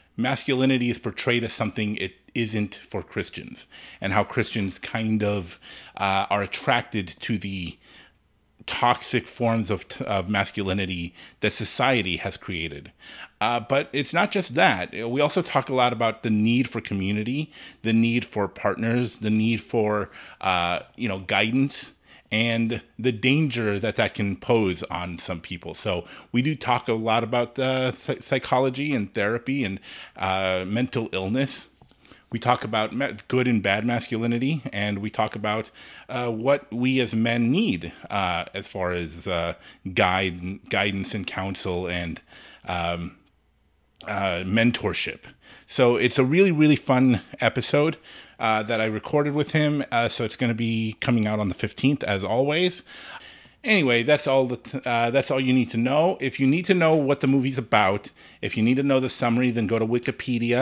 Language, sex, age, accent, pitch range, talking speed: English, male, 30-49, American, 100-130 Hz, 165 wpm